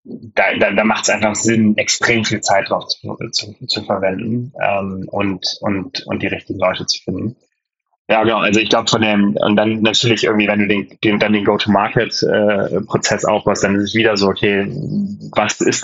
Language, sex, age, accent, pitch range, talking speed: German, male, 20-39, German, 100-110 Hz, 195 wpm